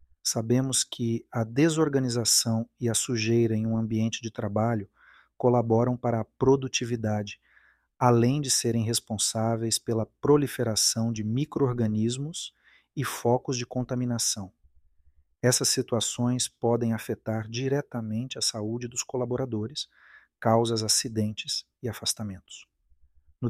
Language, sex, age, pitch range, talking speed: Portuguese, male, 40-59, 110-125 Hz, 105 wpm